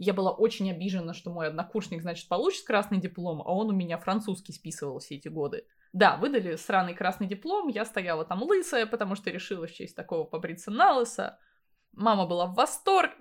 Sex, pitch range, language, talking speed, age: female, 190-265 Hz, Russian, 180 wpm, 20-39